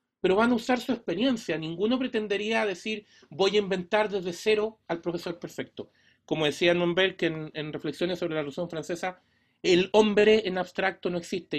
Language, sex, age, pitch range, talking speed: Spanish, male, 40-59, 155-210 Hz, 170 wpm